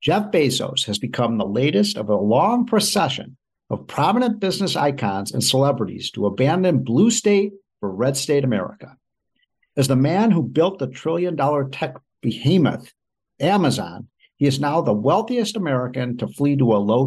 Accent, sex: American, male